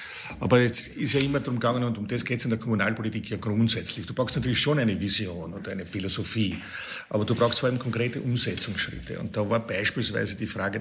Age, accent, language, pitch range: 50-69, Austrian, German, 105-120 Hz